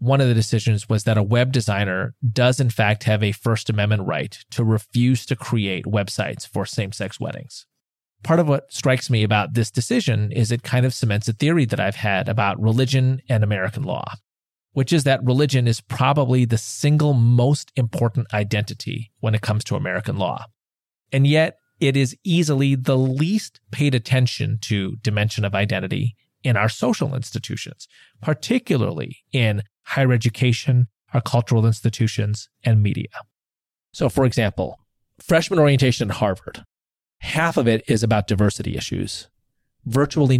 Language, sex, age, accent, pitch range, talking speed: English, male, 30-49, American, 105-135 Hz, 155 wpm